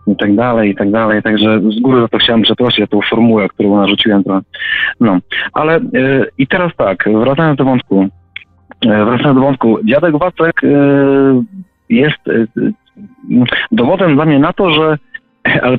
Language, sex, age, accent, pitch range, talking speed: Polish, male, 30-49, native, 110-145 Hz, 145 wpm